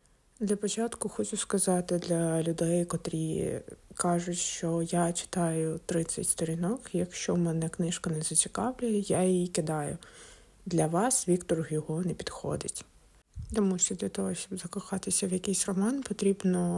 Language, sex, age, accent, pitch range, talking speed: Ukrainian, female, 20-39, native, 170-195 Hz, 135 wpm